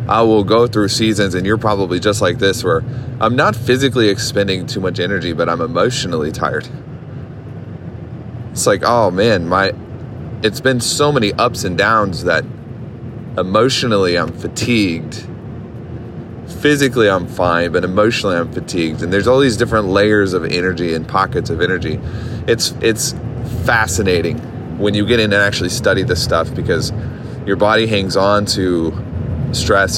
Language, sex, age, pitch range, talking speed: English, male, 30-49, 95-120 Hz, 155 wpm